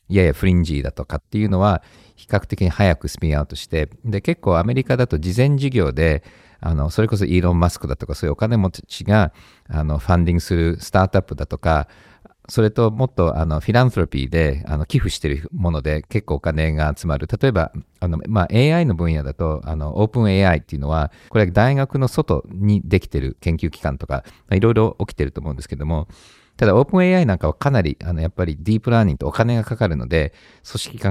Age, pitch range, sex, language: 50-69, 80-110 Hz, male, Japanese